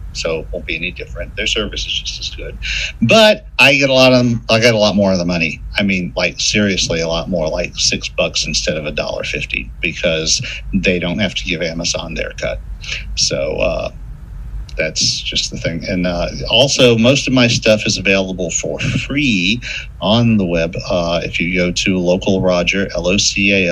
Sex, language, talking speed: male, English, 200 wpm